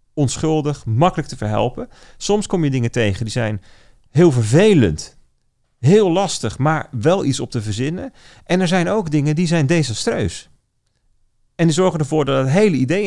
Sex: male